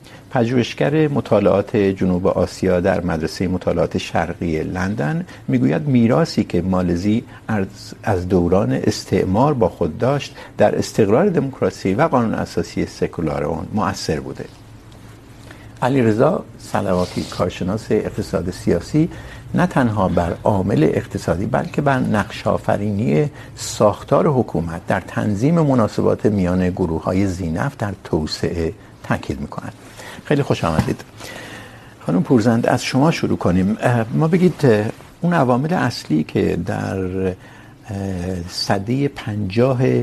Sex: male